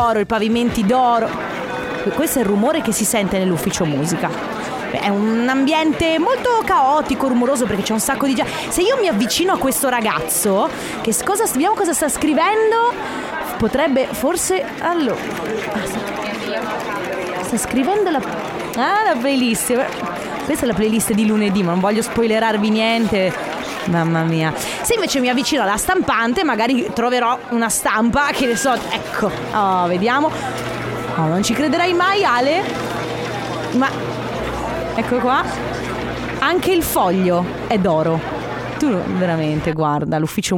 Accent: native